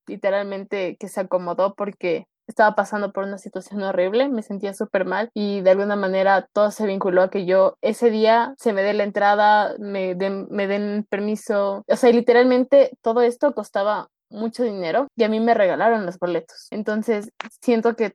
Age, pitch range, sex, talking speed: 20-39, 200-240 Hz, female, 180 wpm